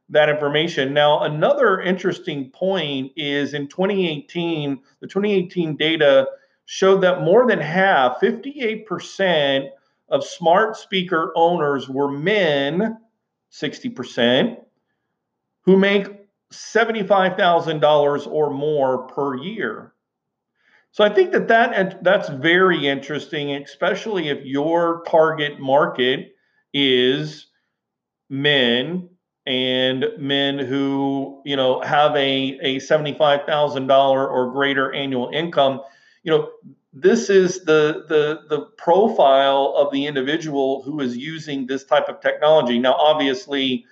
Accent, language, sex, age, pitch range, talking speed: American, English, male, 40-59, 135-175 Hz, 110 wpm